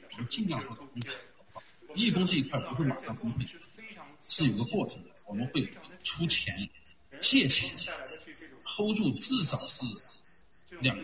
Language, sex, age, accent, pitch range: Chinese, male, 50-69, native, 115-150 Hz